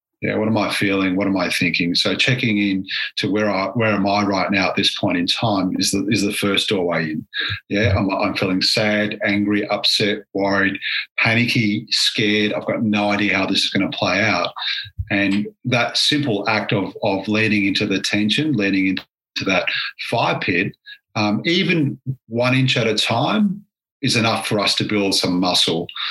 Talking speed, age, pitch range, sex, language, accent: 190 wpm, 40-59, 100-120 Hz, male, English, Australian